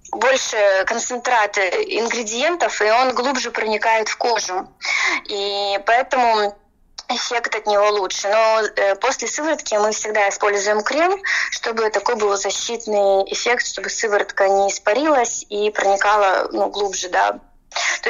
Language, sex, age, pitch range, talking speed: Russian, female, 20-39, 200-245 Hz, 125 wpm